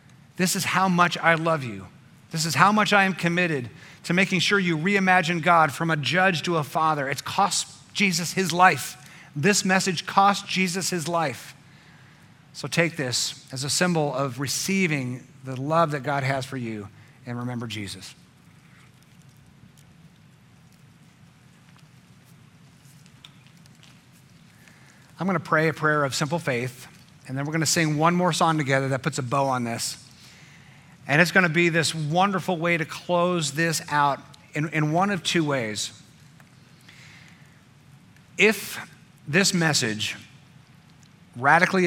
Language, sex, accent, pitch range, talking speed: English, male, American, 140-170 Hz, 145 wpm